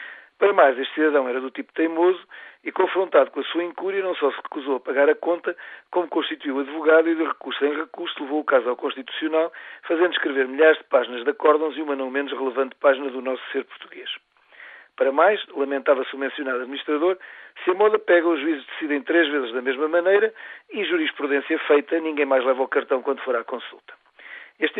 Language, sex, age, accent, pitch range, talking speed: Portuguese, male, 50-69, Portuguese, 140-180 Hz, 205 wpm